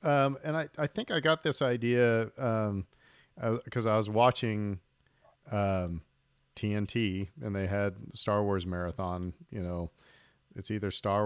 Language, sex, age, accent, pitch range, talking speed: English, male, 40-59, American, 95-125 Hz, 150 wpm